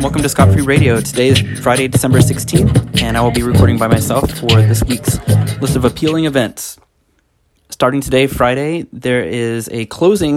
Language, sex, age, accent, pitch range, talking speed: English, male, 20-39, American, 110-135 Hz, 180 wpm